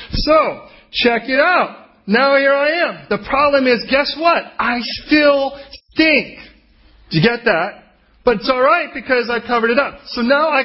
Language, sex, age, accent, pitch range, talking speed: English, male, 40-59, American, 215-275 Hz, 175 wpm